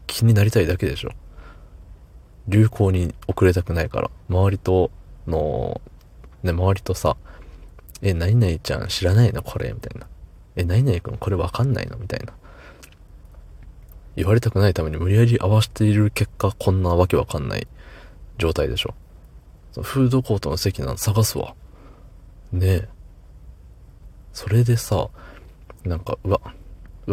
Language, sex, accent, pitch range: Japanese, male, native, 80-110 Hz